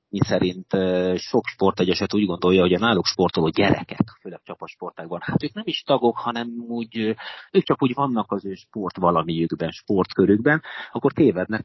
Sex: male